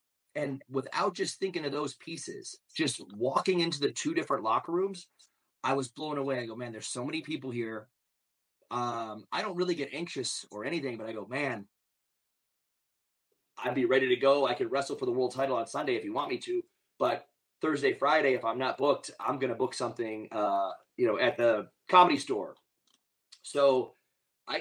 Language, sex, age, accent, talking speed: English, male, 30-49, American, 195 wpm